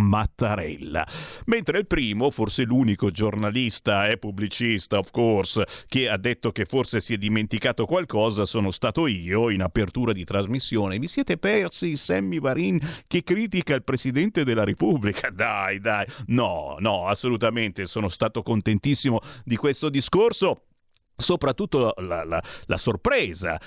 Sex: male